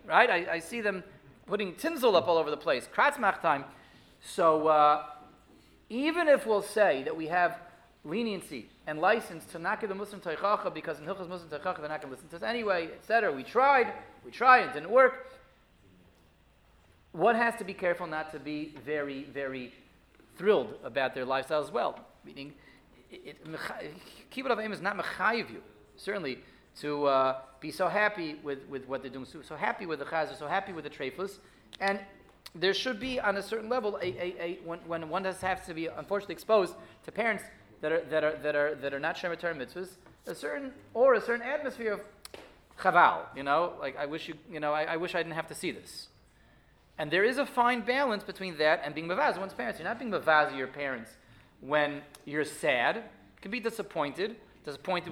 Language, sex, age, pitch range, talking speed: English, male, 30-49, 150-205 Hz, 200 wpm